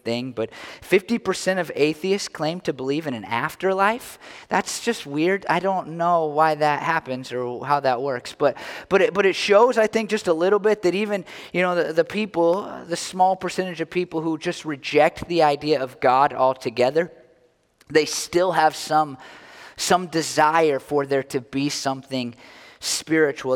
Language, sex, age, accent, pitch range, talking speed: English, male, 20-39, American, 135-170 Hz, 170 wpm